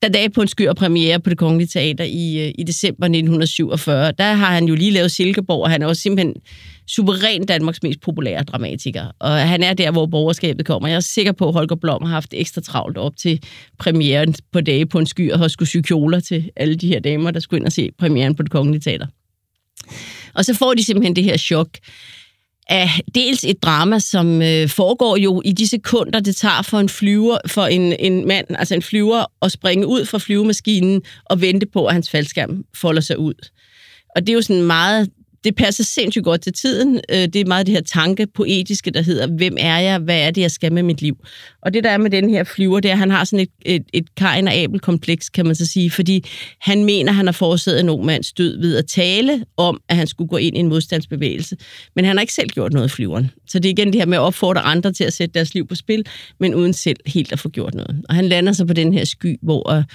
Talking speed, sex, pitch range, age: 240 wpm, female, 160-195 Hz, 30-49